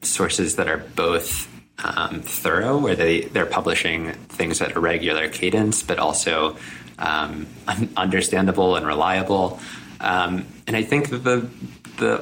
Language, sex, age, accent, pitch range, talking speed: English, male, 20-39, American, 80-110 Hz, 135 wpm